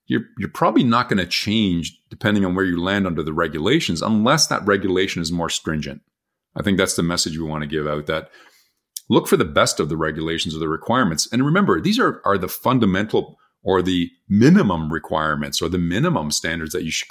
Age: 40-59